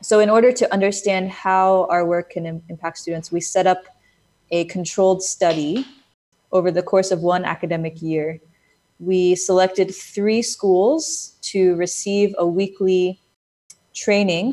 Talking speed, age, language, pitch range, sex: 135 wpm, 20-39, English, 165-190 Hz, female